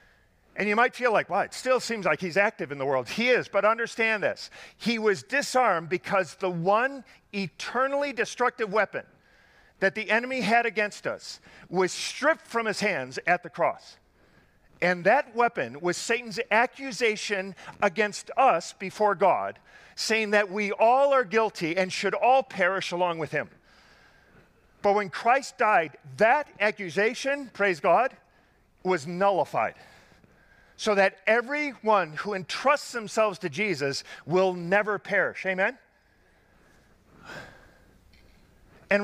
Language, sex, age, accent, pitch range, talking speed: English, male, 50-69, American, 190-245 Hz, 135 wpm